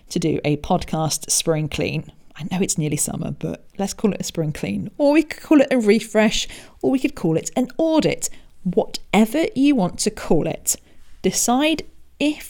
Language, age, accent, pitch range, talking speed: English, 40-59, British, 160-225 Hz, 190 wpm